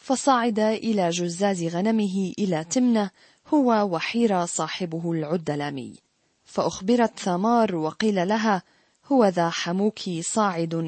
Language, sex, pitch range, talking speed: Arabic, female, 170-215 Hz, 100 wpm